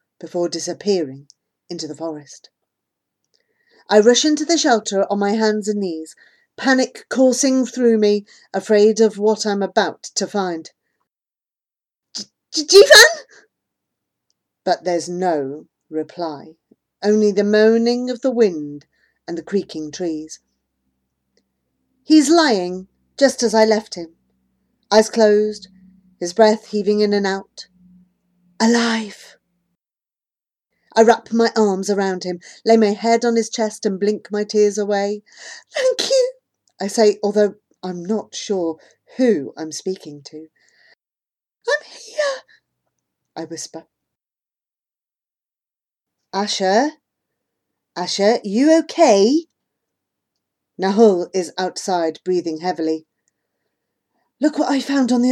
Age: 40-59